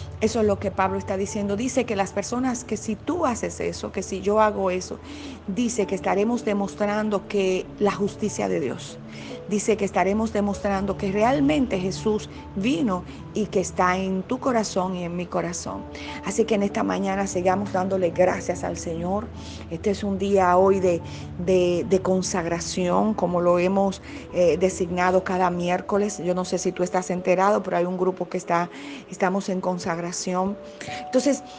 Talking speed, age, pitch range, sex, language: 170 wpm, 40-59, 185-220 Hz, female, Spanish